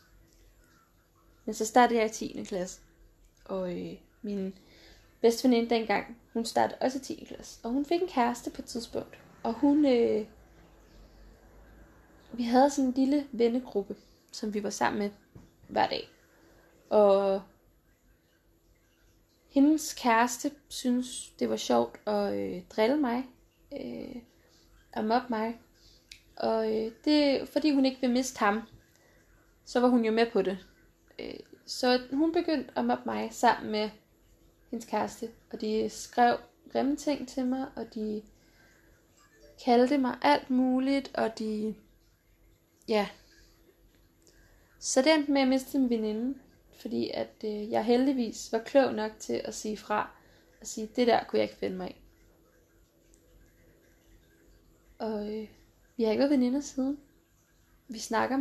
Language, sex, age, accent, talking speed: Danish, female, 20-39, native, 145 wpm